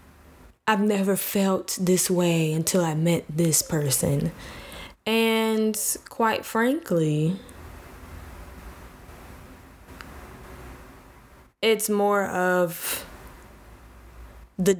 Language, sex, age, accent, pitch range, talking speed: English, female, 10-29, American, 160-205 Hz, 70 wpm